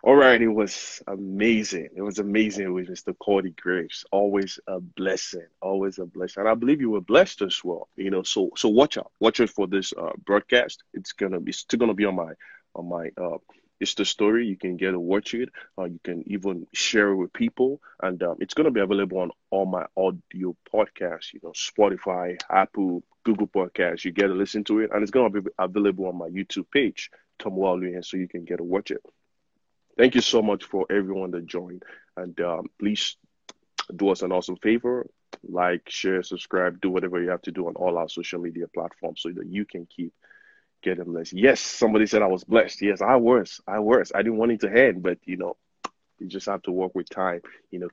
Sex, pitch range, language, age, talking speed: male, 90-105 Hz, English, 20-39, 220 wpm